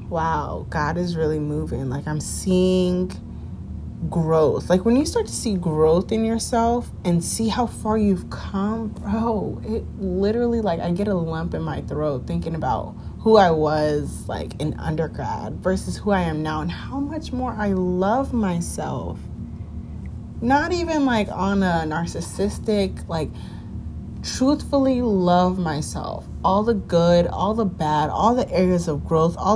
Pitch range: 140-215 Hz